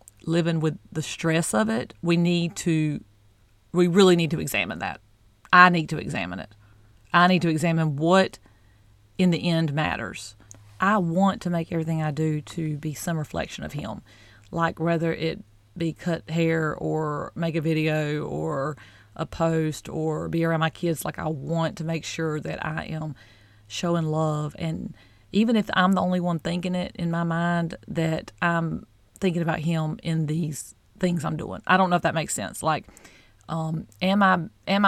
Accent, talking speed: American, 180 wpm